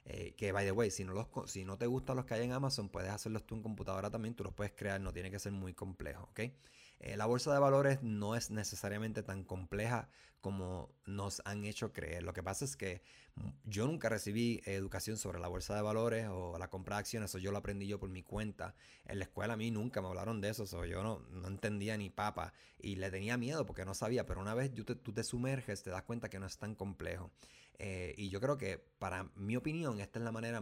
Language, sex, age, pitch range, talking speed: English, male, 30-49, 95-115 Hz, 250 wpm